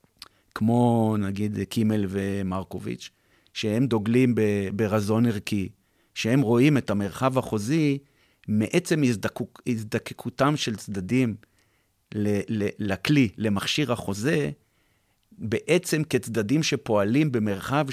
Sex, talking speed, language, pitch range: male, 95 wpm, Hebrew, 105-140 Hz